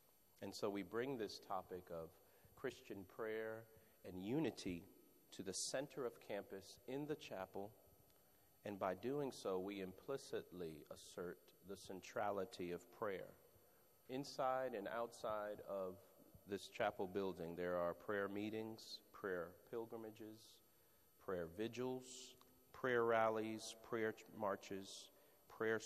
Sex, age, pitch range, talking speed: male, 40-59, 95-115 Hz, 115 wpm